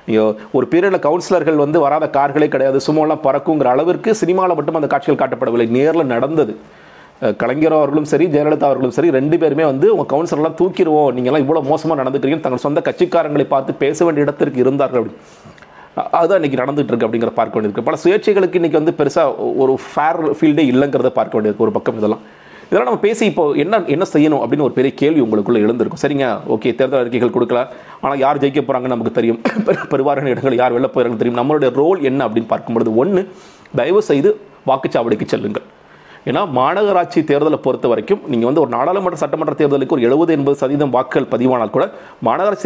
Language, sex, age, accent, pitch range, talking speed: Tamil, male, 40-59, native, 135-175 Hz, 175 wpm